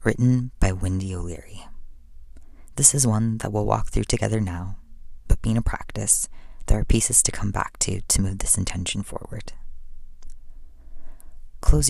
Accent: American